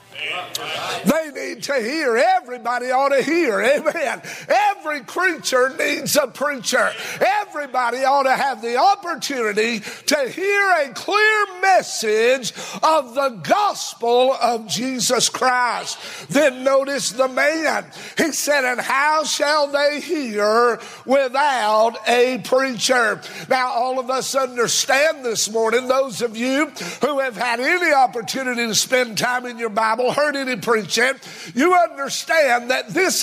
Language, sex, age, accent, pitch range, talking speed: English, male, 60-79, American, 240-300 Hz, 130 wpm